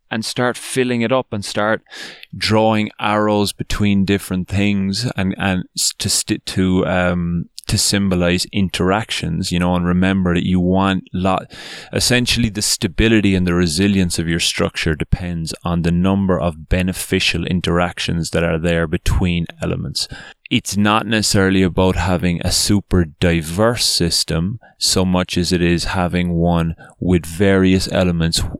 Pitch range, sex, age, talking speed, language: 85-95 Hz, male, 20-39, 145 wpm, English